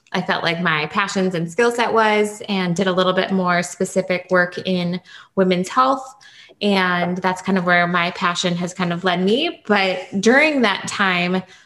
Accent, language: American, English